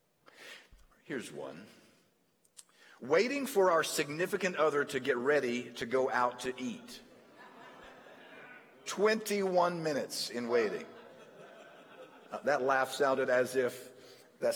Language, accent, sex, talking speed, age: English, American, male, 105 wpm, 50-69